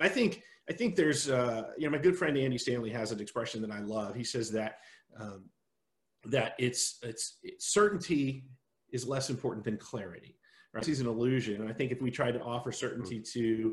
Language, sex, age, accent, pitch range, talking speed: English, male, 40-59, American, 110-135 Hz, 205 wpm